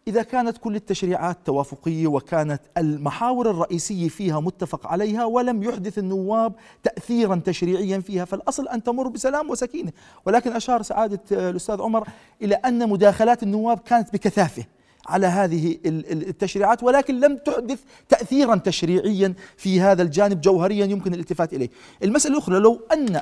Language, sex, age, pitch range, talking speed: Arabic, male, 40-59, 185-240 Hz, 135 wpm